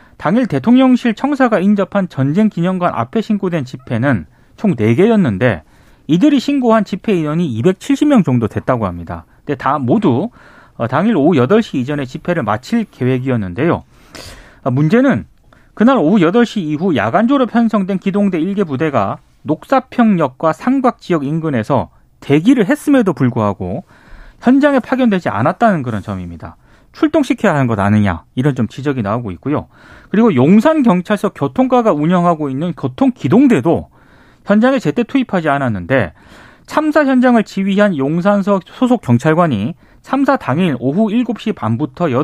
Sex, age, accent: male, 30-49, native